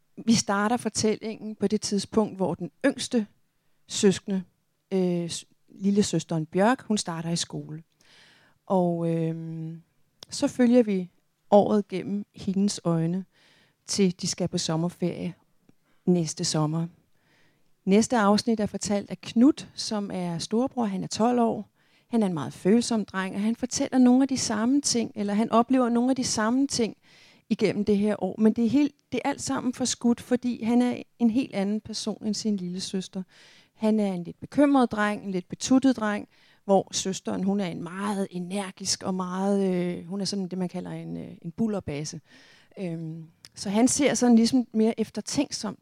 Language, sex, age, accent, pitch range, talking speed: Danish, female, 40-59, native, 175-230 Hz, 175 wpm